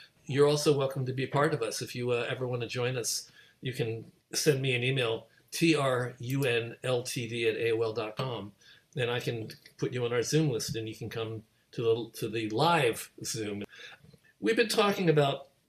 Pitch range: 115-150 Hz